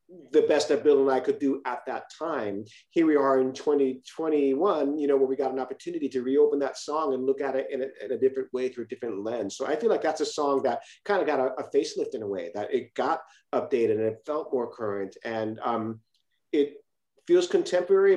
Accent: American